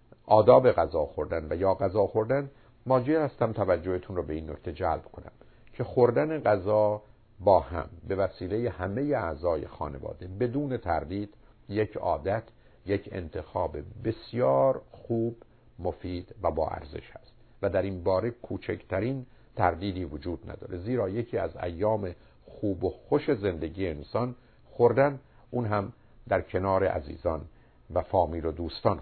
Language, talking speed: Persian, 135 wpm